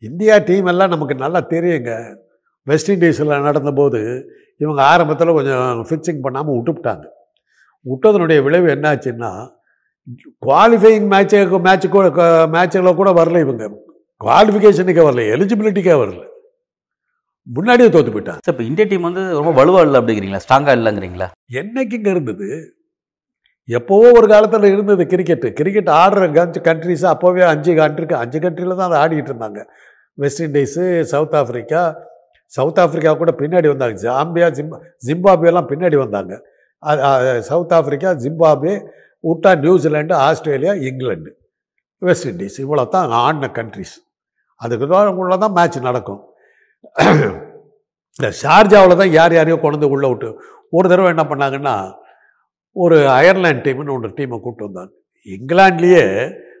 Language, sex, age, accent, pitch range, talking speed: Tamil, male, 60-79, native, 140-190 Hz, 125 wpm